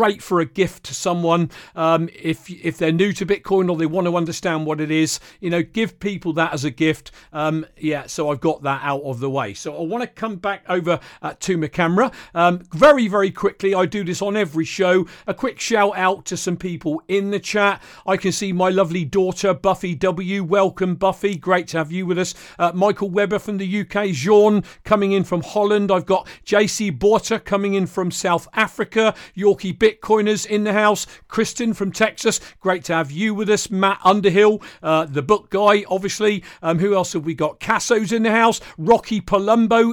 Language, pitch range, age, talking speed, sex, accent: English, 175-210 Hz, 40-59, 210 wpm, male, British